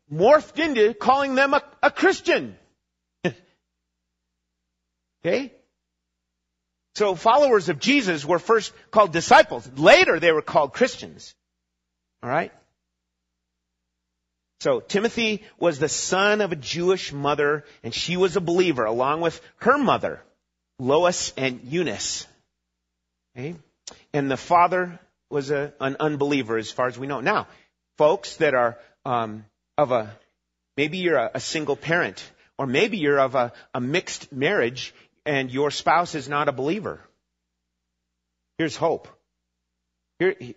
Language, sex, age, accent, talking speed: English, male, 40-59, American, 130 wpm